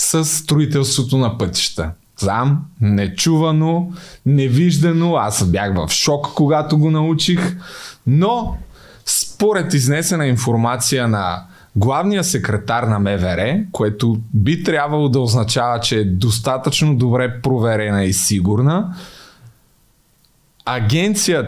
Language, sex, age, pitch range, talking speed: Bulgarian, male, 30-49, 110-155 Hz, 105 wpm